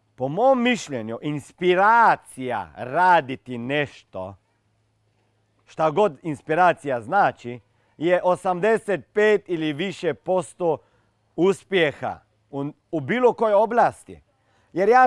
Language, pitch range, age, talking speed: Croatian, 155-230 Hz, 40-59, 90 wpm